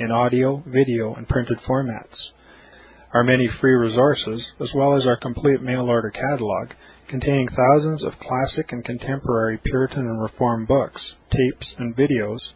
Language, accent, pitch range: English, American, 115-130 Hz